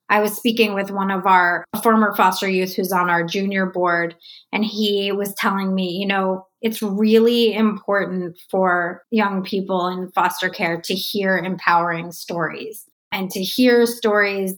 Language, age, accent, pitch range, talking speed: English, 20-39, American, 185-215 Hz, 160 wpm